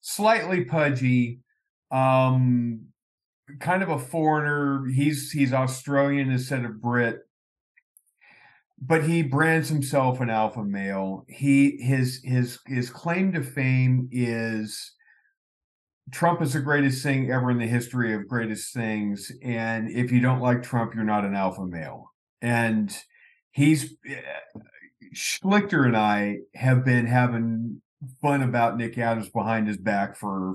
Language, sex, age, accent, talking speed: English, male, 50-69, American, 130 wpm